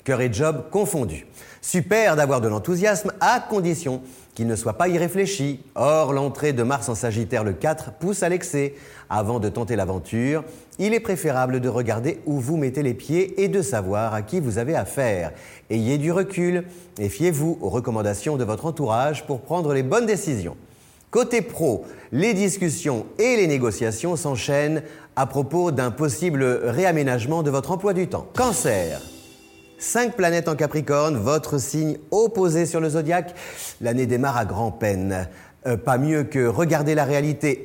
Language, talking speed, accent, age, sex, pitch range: French, 165 wpm, French, 30-49, male, 115-170 Hz